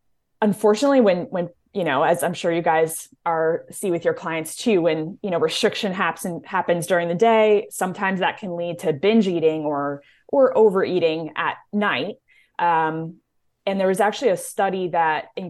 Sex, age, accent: female, 20-39, American